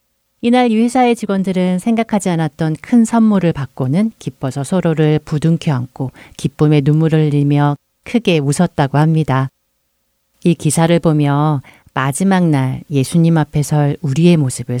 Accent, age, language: native, 40-59, Korean